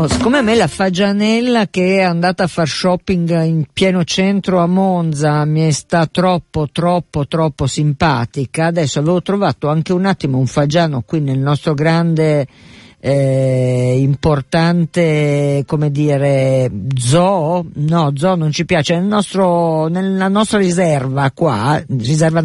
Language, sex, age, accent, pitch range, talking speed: Italian, female, 50-69, native, 150-200 Hz, 135 wpm